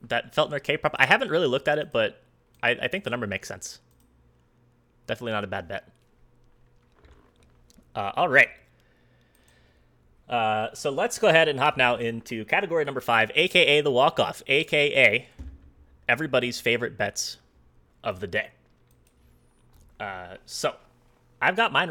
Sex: male